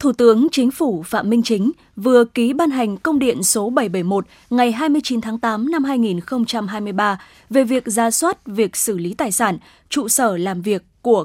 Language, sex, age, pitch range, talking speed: Vietnamese, female, 20-39, 215-275 Hz, 185 wpm